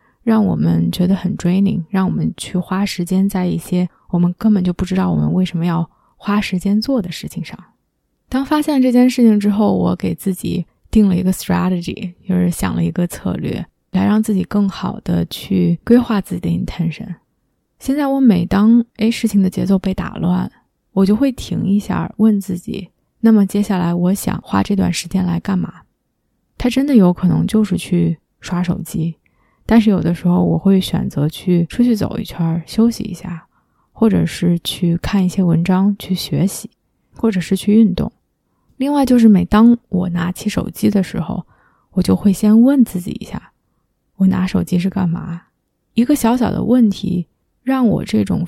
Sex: female